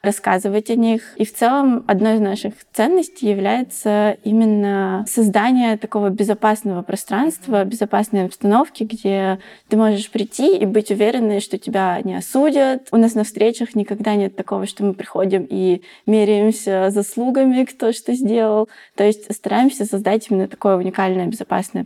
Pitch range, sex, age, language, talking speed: 195-225 Hz, female, 20-39, Russian, 145 wpm